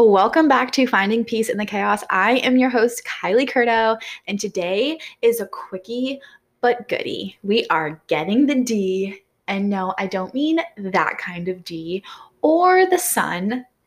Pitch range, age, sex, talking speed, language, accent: 195-260 Hz, 10-29, female, 165 wpm, English, American